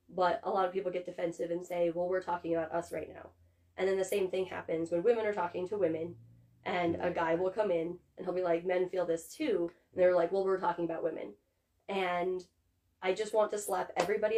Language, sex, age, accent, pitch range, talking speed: English, female, 20-39, American, 165-185 Hz, 240 wpm